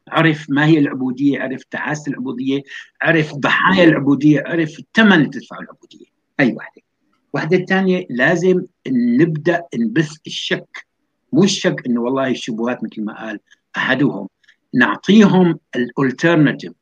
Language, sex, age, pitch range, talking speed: Arabic, male, 60-79, 135-180 Hz, 120 wpm